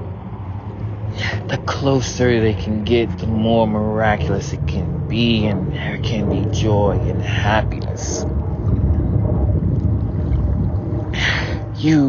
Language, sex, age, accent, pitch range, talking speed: English, male, 30-49, American, 100-120 Hz, 95 wpm